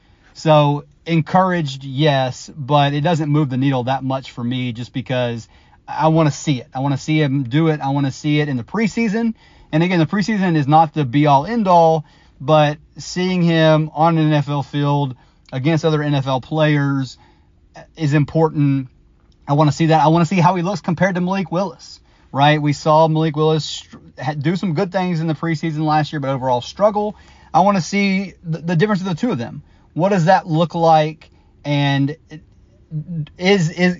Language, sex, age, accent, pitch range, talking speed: English, male, 30-49, American, 135-165 Hz, 190 wpm